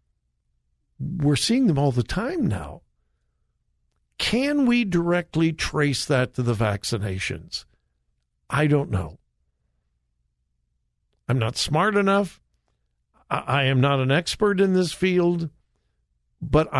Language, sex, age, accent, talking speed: English, male, 60-79, American, 110 wpm